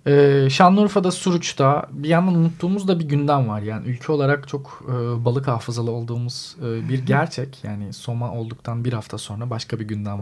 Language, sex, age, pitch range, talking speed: Turkish, male, 40-59, 120-150 Hz, 175 wpm